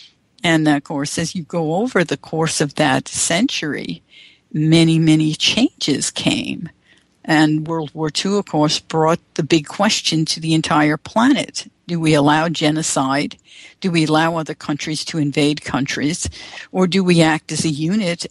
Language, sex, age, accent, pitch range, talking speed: English, female, 60-79, American, 155-215 Hz, 160 wpm